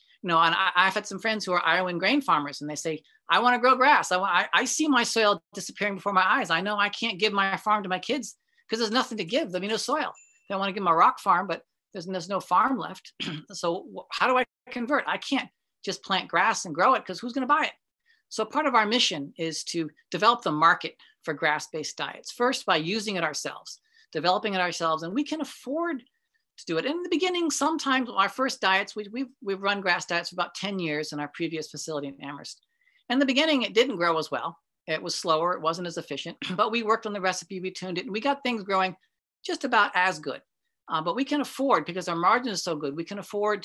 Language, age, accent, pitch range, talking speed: English, 40-59, American, 170-255 Hz, 245 wpm